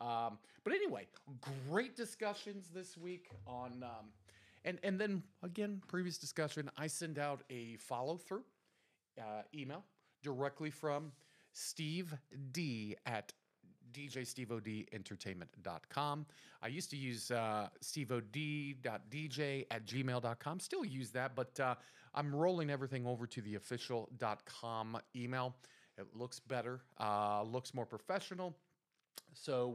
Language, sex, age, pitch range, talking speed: English, male, 40-59, 115-155 Hz, 125 wpm